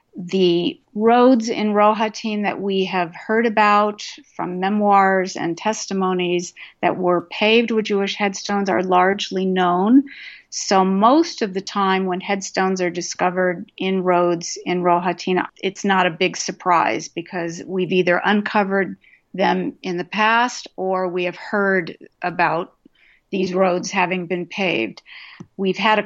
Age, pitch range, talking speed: 50-69, 185-225 Hz, 140 wpm